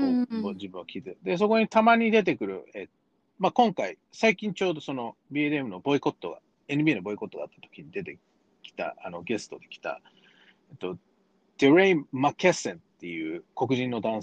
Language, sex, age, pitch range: Japanese, male, 40-59, 155-250 Hz